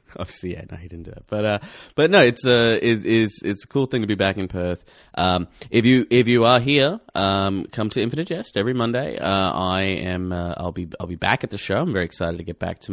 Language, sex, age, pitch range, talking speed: English, male, 30-49, 90-110 Hz, 270 wpm